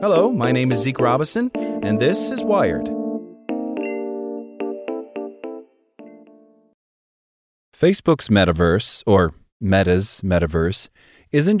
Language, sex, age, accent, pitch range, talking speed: English, male, 30-49, American, 95-125 Hz, 85 wpm